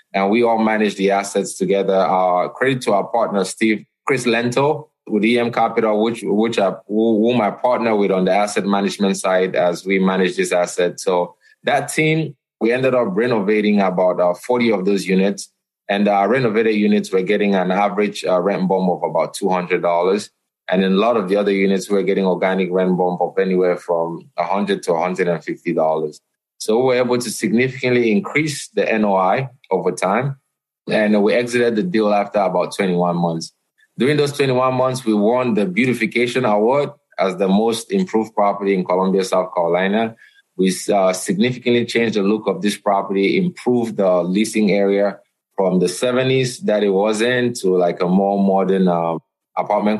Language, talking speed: English, 175 wpm